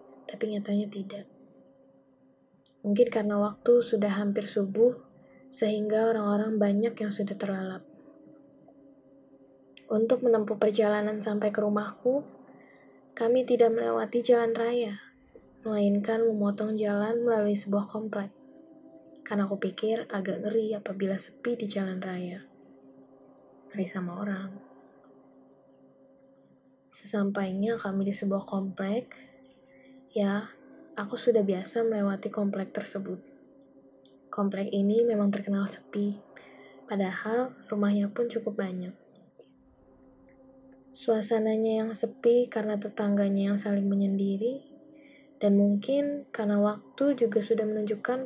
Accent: native